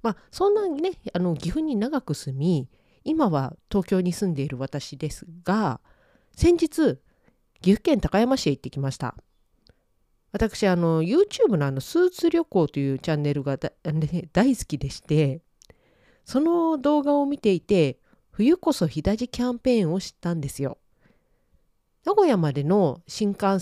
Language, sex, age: Japanese, female, 40-59